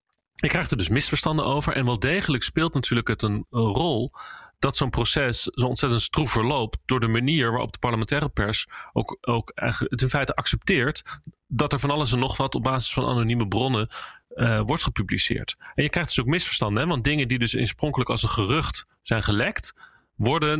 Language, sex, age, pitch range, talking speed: Dutch, male, 40-59, 115-135 Hz, 200 wpm